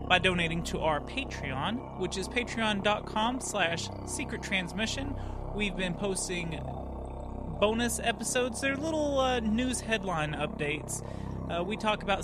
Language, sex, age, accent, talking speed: English, male, 30-49, American, 125 wpm